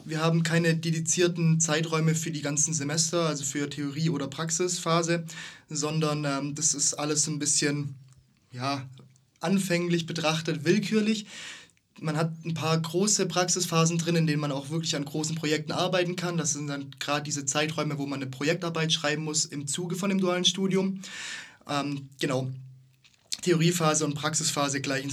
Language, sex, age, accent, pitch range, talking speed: German, male, 20-39, German, 140-165 Hz, 160 wpm